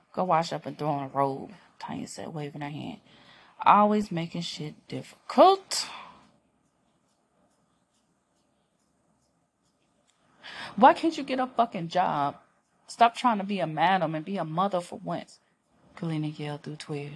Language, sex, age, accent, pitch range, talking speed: English, female, 30-49, American, 155-230 Hz, 135 wpm